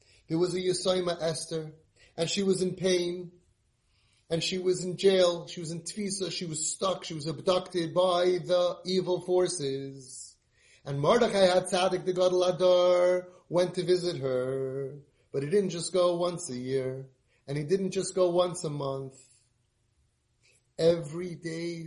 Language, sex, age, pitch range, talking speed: English, male, 30-49, 145-195 Hz, 155 wpm